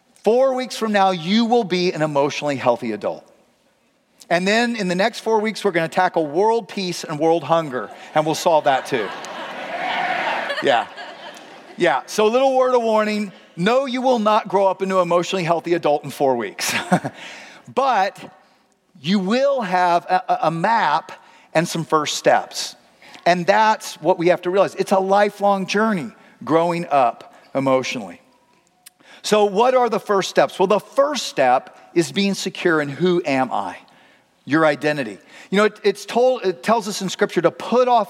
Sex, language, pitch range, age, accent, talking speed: male, English, 165-215 Hz, 40-59, American, 170 wpm